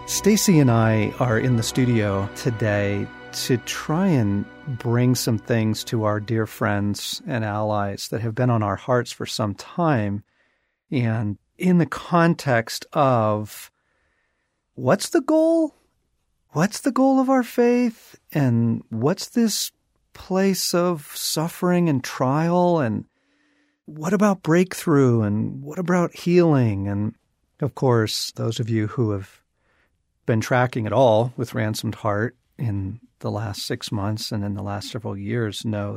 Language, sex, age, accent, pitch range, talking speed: English, male, 50-69, American, 105-145 Hz, 145 wpm